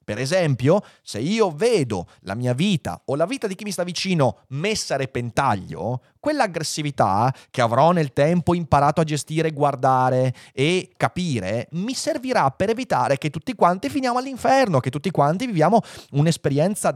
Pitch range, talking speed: 125-200 Hz, 155 wpm